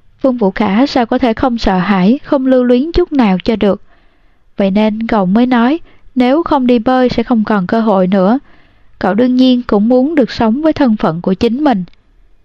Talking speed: 210 wpm